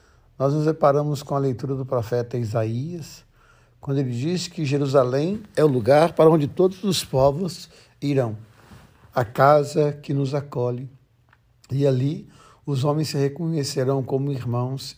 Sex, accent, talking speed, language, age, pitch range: male, Brazilian, 145 wpm, Portuguese, 60-79, 115-140 Hz